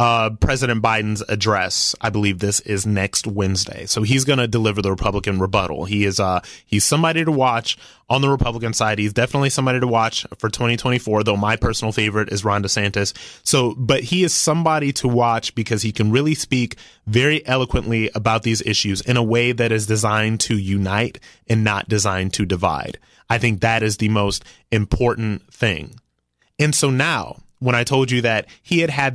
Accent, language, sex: American, English, male